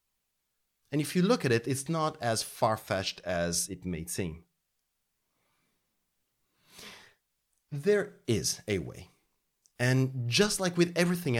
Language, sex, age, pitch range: English, male, 30-49, 100-145 Hz